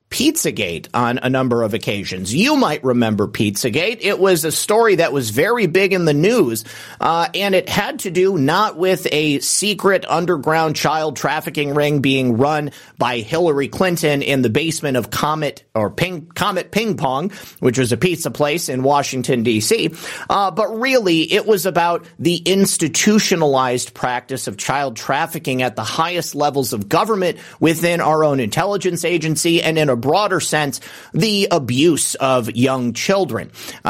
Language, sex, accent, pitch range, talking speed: English, male, American, 130-180 Hz, 160 wpm